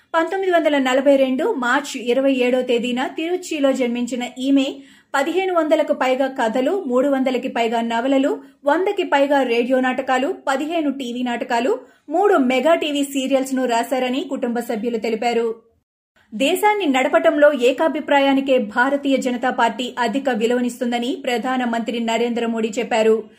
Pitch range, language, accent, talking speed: 240-285 Hz, Telugu, native, 115 wpm